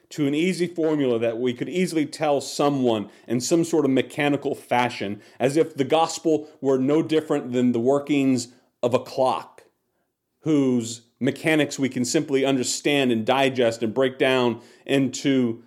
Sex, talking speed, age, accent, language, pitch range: male, 155 wpm, 40-59, American, English, 125-145 Hz